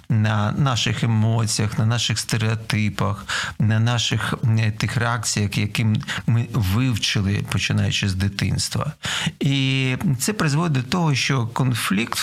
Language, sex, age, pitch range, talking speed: Ukrainian, male, 40-59, 105-130 Hz, 120 wpm